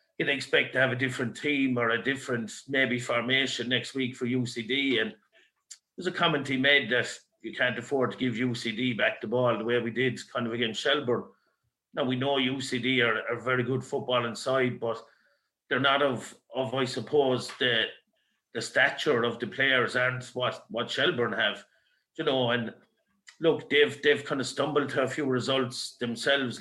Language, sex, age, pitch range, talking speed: English, male, 50-69, 120-135 Hz, 185 wpm